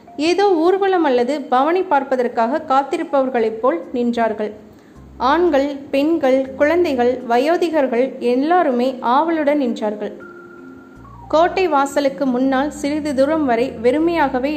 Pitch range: 245-300 Hz